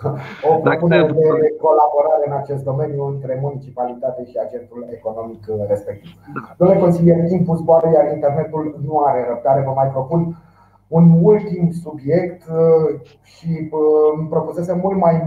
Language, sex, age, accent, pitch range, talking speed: Romanian, male, 30-49, native, 125-155 Hz, 120 wpm